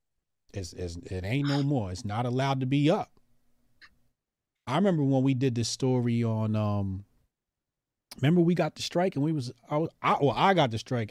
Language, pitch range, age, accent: English, 105-135 Hz, 30-49, American